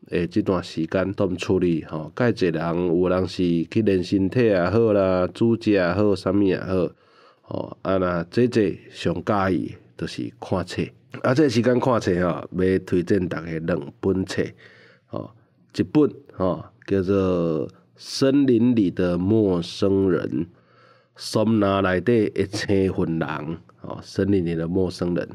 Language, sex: Chinese, male